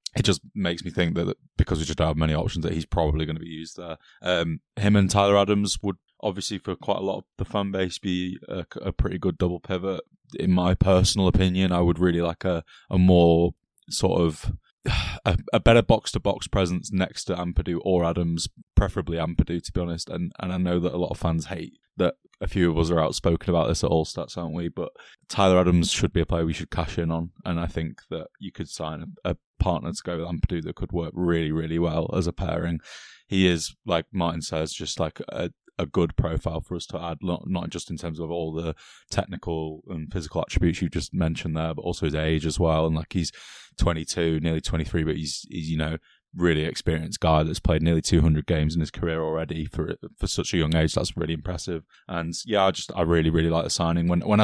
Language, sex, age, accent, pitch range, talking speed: English, male, 20-39, British, 80-90 Hz, 235 wpm